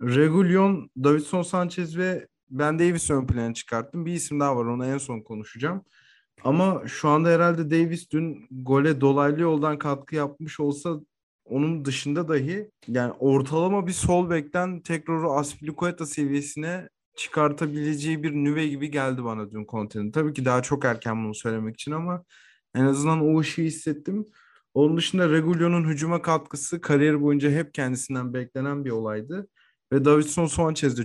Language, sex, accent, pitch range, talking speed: Turkish, male, native, 130-165 Hz, 145 wpm